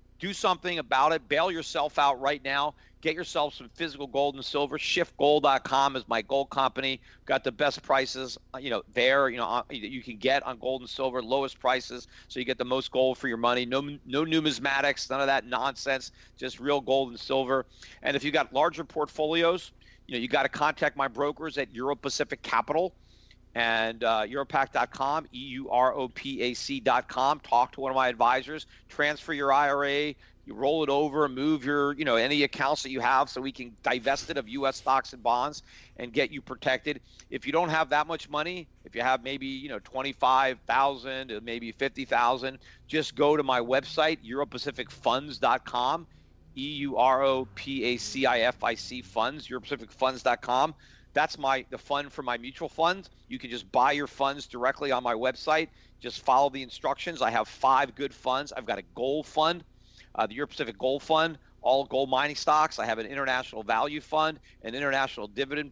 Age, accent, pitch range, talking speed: 50-69, American, 125-145 Hz, 175 wpm